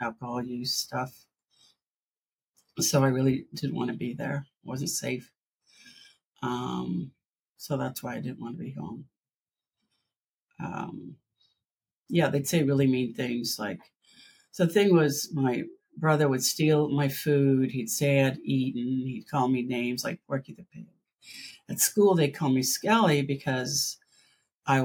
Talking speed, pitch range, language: 150 wpm, 125-155 Hz, English